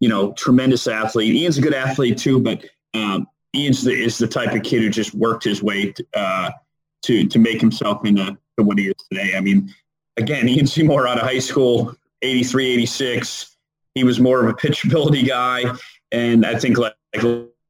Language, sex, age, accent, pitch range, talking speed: English, male, 30-49, American, 110-145 Hz, 195 wpm